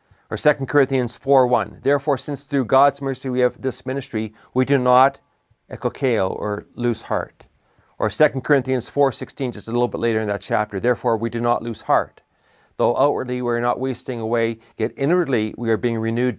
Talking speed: 185 wpm